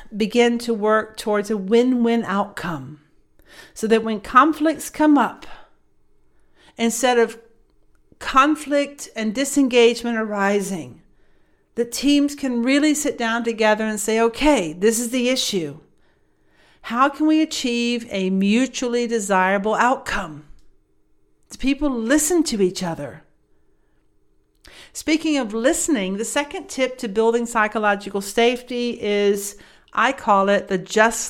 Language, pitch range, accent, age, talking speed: English, 200-260 Hz, American, 50-69, 120 wpm